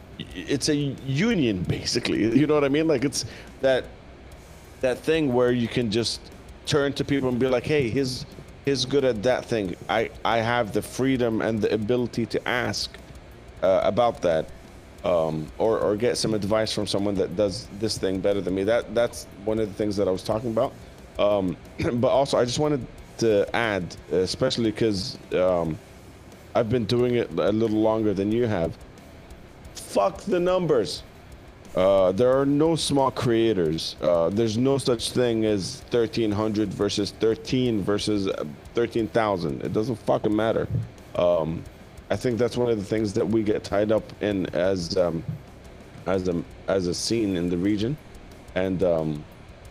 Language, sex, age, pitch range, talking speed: Arabic, male, 30-49, 95-125 Hz, 170 wpm